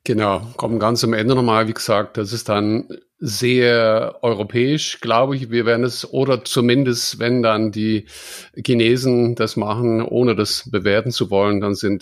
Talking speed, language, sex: 165 wpm, English, male